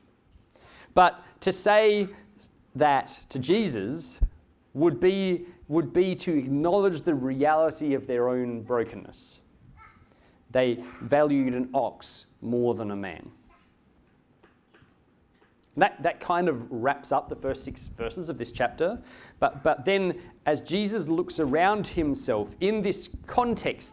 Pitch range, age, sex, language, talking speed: 125-180 Hz, 40-59, male, English, 125 wpm